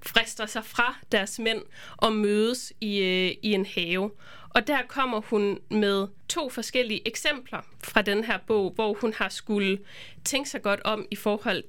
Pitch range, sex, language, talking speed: 200-245 Hz, female, Danish, 175 wpm